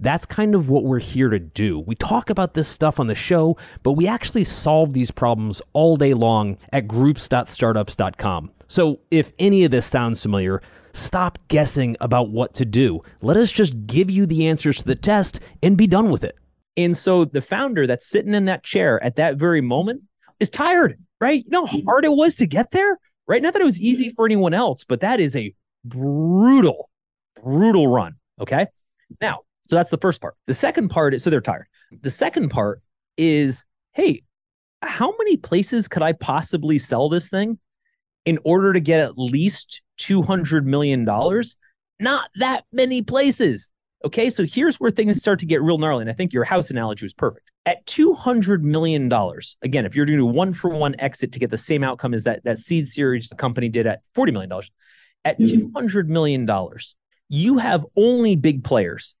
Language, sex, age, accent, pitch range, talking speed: English, male, 30-49, American, 125-205 Hz, 190 wpm